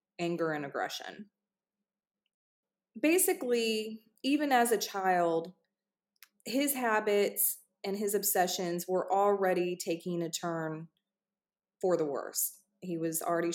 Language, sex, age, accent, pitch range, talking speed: English, female, 30-49, American, 175-215 Hz, 105 wpm